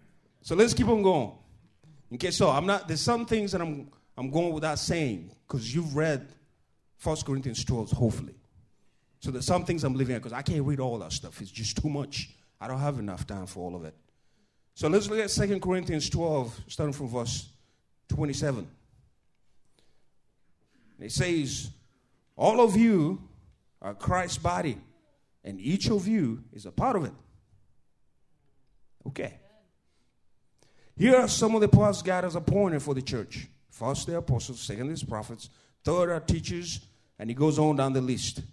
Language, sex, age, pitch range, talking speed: English, male, 30-49, 120-165 Hz, 170 wpm